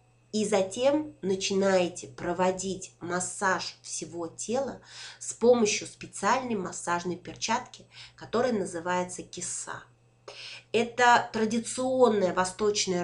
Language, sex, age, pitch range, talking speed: Russian, female, 20-39, 180-230 Hz, 85 wpm